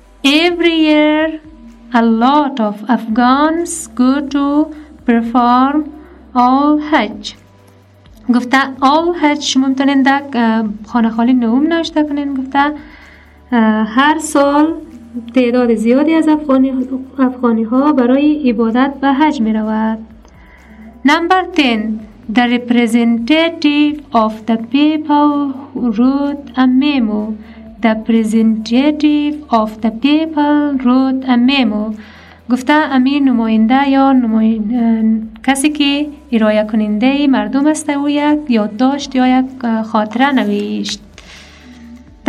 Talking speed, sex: 90 wpm, female